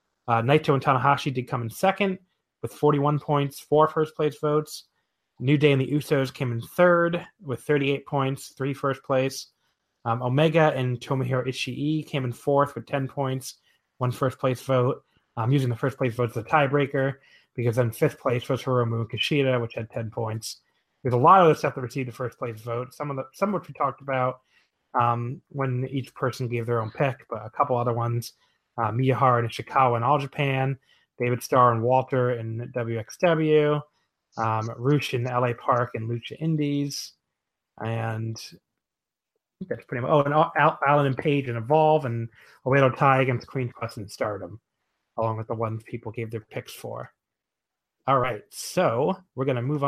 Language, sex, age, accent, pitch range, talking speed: English, male, 30-49, American, 120-145 Hz, 190 wpm